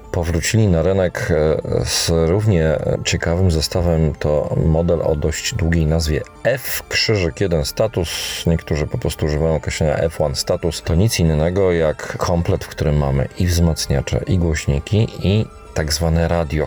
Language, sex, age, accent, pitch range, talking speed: Polish, male, 40-59, native, 75-90 Hz, 140 wpm